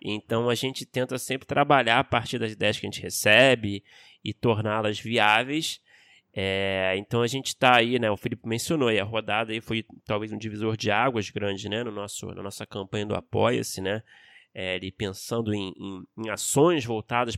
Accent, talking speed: Brazilian, 190 wpm